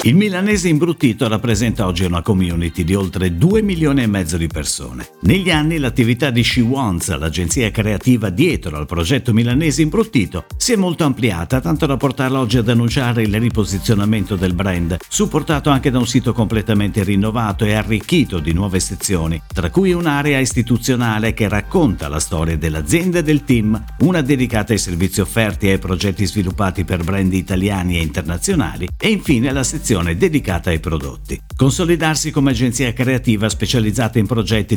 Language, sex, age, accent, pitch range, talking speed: Italian, male, 50-69, native, 95-140 Hz, 160 wpm